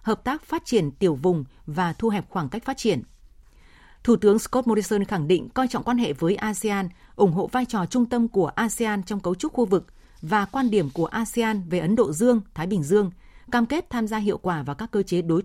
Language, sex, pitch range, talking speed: Vietnamese, female, 180-230 Hz, 235 wpm